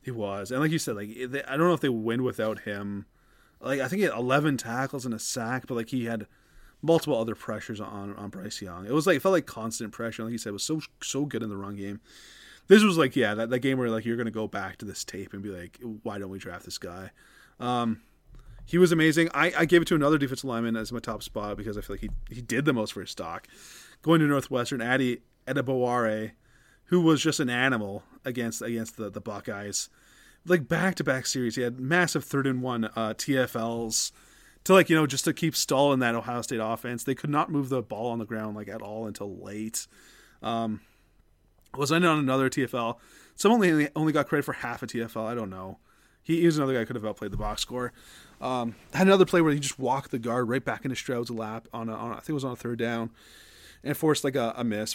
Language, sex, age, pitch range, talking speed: English, male, 30-49, 110-140 Hz, 245 wpm